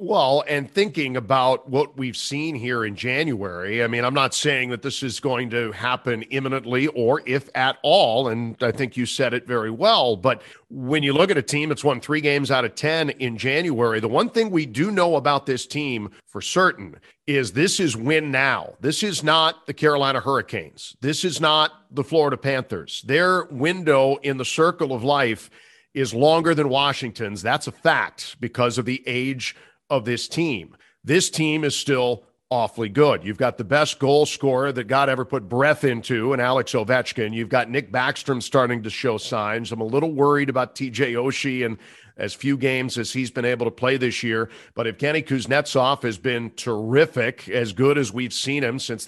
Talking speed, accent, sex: 200 wpm, American, male